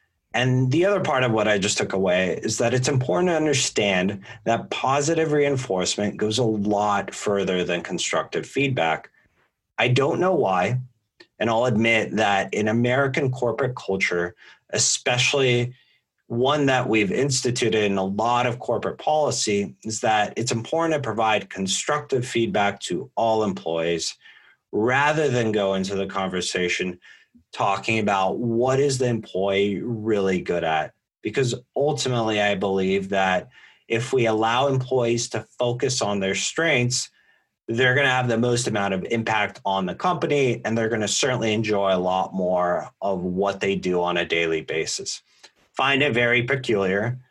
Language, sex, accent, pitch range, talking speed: English, male, American, 100-125 Hz, 155 wpm